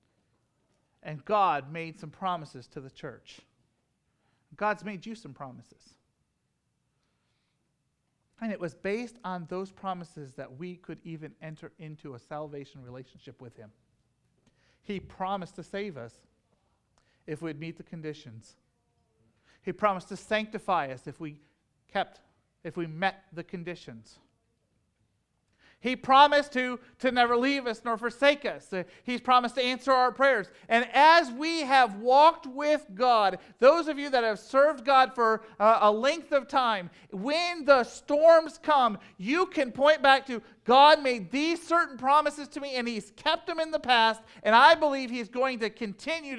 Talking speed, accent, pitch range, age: 155 wpm, American, 160-260 Hz, 40-59